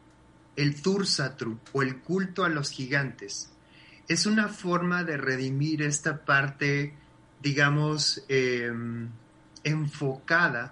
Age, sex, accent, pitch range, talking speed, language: 30-49, male, Mexican, 125-150 Hz, 100 wpm, Spanish